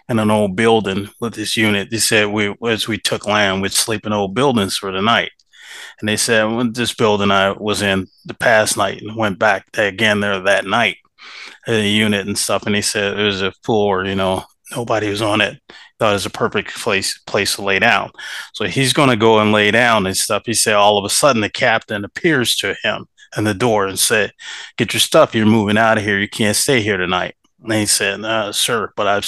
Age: 30-49